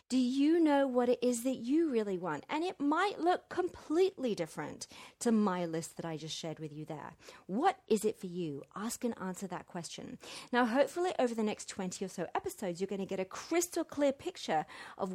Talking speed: 215 wpm